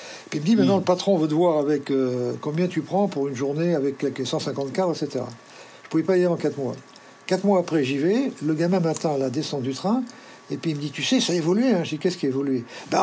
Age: 50-69